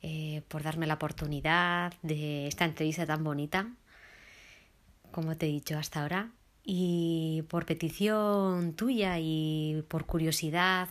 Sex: female